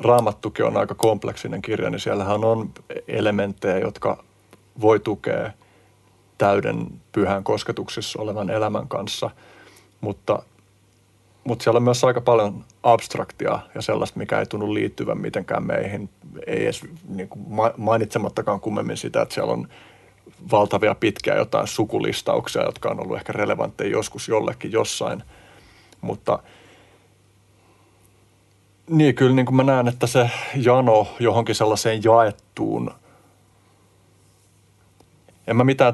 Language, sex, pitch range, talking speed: Finnish, male, 95-115 Hz, 120 wpm